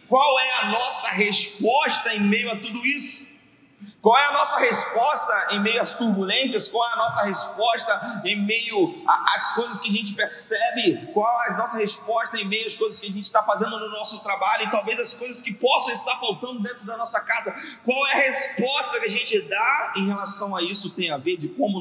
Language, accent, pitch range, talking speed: Portuguese, Brazilian, 175-245 Hz, 215 wpm